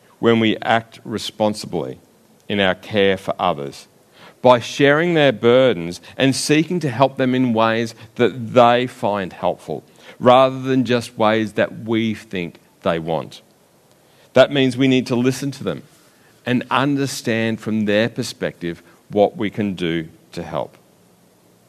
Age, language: 50-69, English